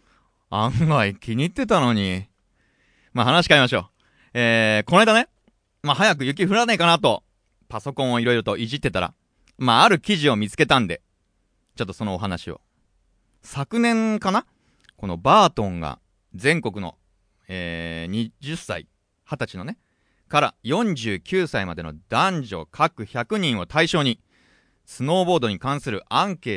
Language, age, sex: Japanese, 30-49, male